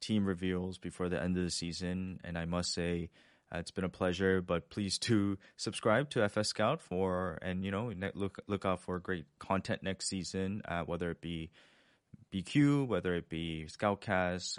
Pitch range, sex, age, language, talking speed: 85-100 Hz, male, 20-39, English, 185 wpm